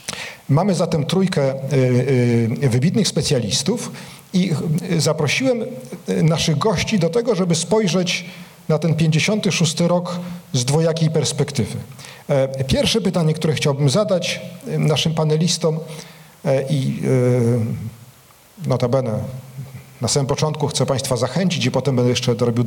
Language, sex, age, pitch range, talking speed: Polish, male, 50-69, 125-155 Hz, 110 wpm